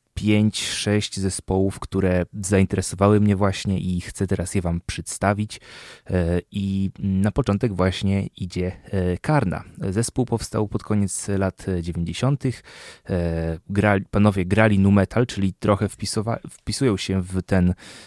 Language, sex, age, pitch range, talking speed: Polish, male, 20-39, 90-105 Hz, 115 wpm